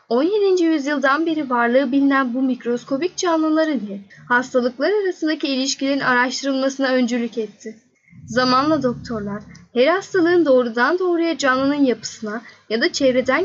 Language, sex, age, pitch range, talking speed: Turkish, female, 10-29, 235-305 Hz, 115 wpm